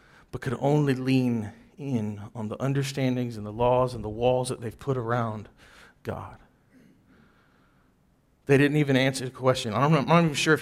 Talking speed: 170 wpm